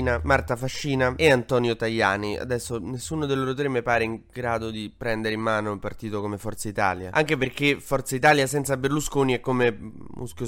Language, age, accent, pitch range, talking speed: Italian, 20-39, native, 115-145 Hz, 185 wpm